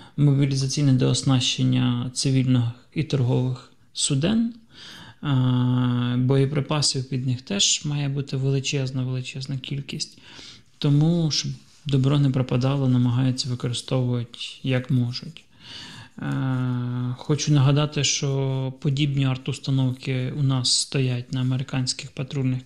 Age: 20-39